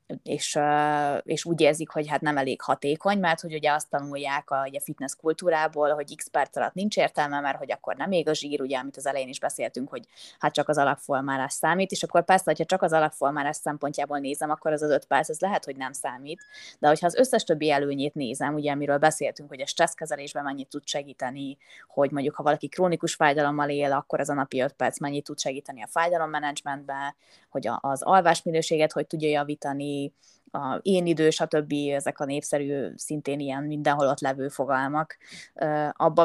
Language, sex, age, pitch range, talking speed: Hungarian, female, 20-39, 140-160 Hz, 195 wpm